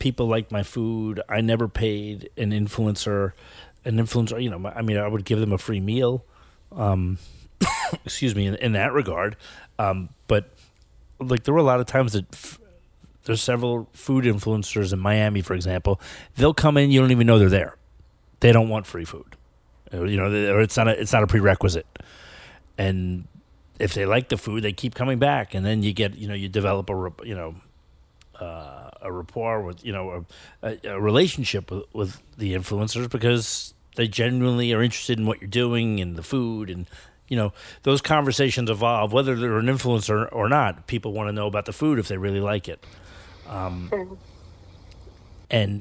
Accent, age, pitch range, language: American, 30-49, 95-120 Hz, English